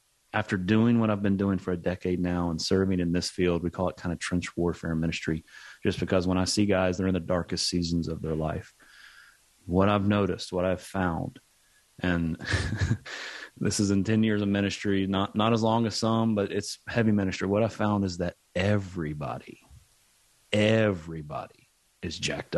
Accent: American